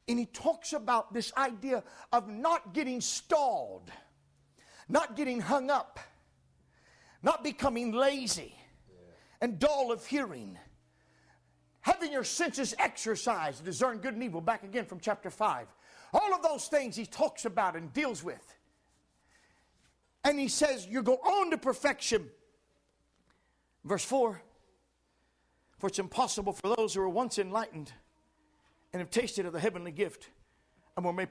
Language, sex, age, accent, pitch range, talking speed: English, male, 50-69, American, 175-245 Hz, 140 wpm